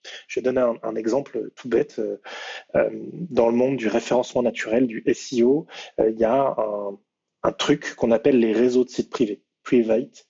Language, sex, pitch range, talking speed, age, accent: French, male, 115-150 Hz, 175 wpm, 20-39, French